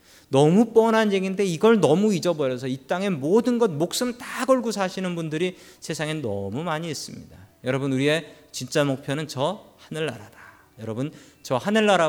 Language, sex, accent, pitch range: Korean, male, native, 115-165 Hz